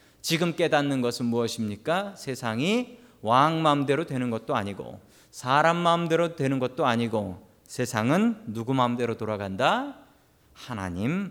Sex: male